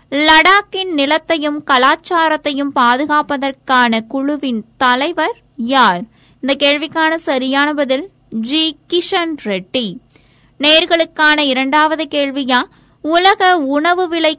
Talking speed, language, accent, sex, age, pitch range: 85 wpm, Tamil, native, female, 20-39, 255-305 Hz